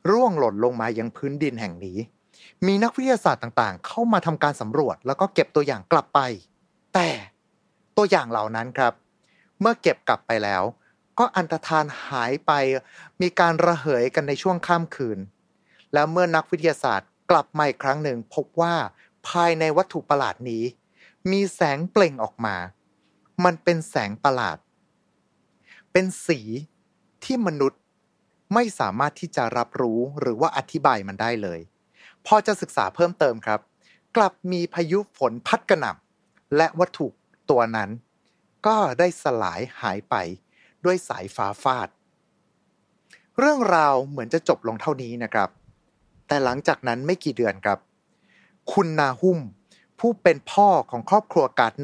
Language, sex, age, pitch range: Thai, male, 30-49, 120-185 Hz